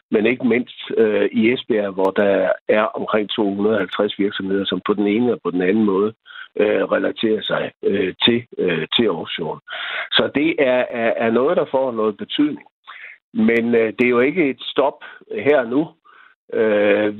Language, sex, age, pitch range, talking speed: Danish, male, 60-79, 105-140 Hz, 170 wpm